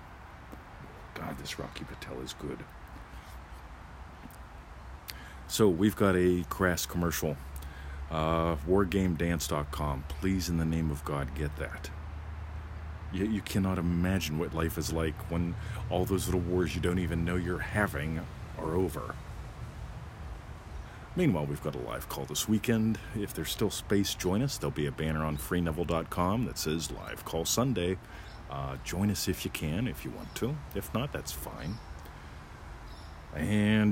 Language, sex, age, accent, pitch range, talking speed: English, male, 50-69, American, 70-95 Hz, 145 wpm